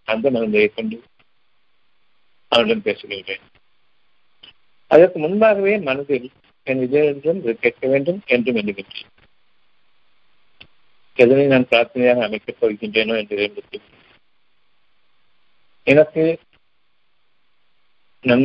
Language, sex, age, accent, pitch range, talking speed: Tamil, male, 50-69, native, 115-155 Hz, 60 wpm